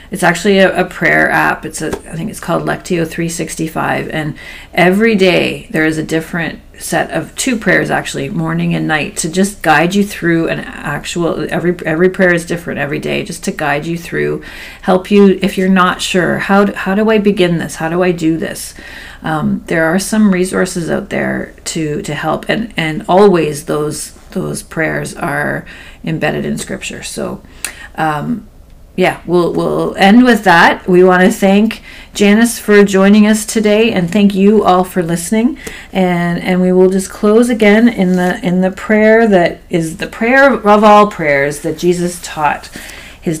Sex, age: female, 40-59